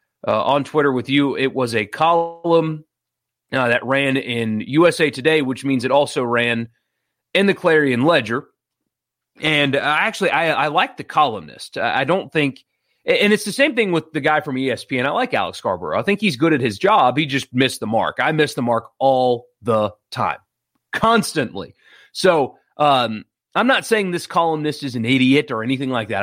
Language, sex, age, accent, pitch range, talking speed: English, male, 30-49, American, 120-155 Hz, 190 wpm